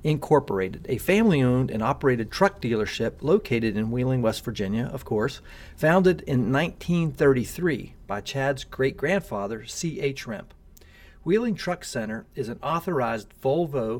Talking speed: 125 wpm